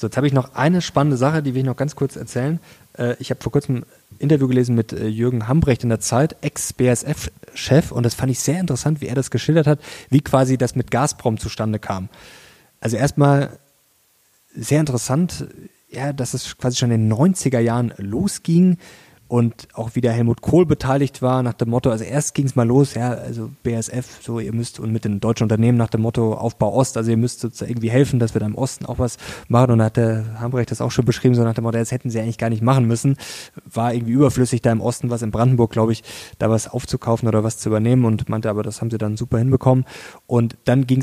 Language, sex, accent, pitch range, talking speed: German, male, German, 115-135 Hz, 225 wpm